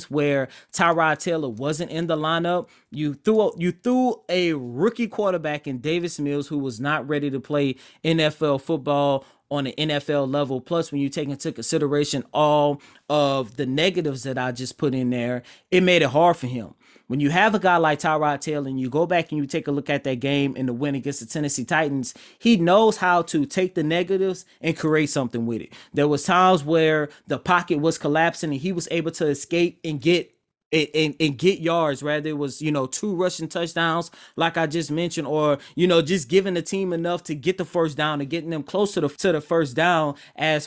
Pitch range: 145-175 Hz